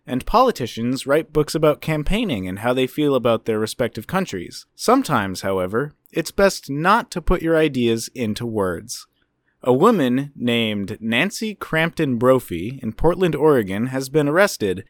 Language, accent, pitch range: English, American, 120-170 Hz